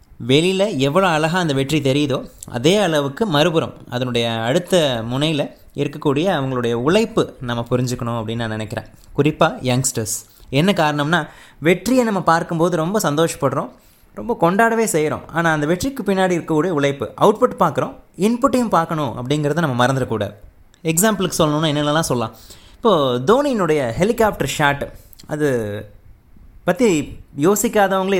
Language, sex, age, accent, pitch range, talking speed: Tamil, male, 20-39, native, 125-170 Hz, 120 wpm